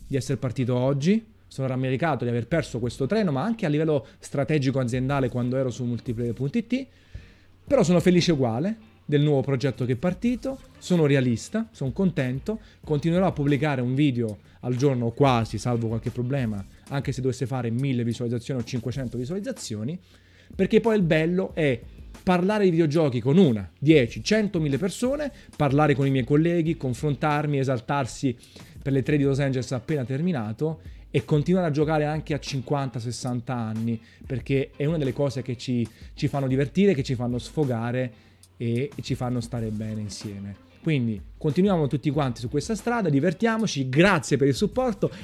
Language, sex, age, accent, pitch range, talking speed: Italian, male, 30-49, native, 125-170 Hz, 165 wpm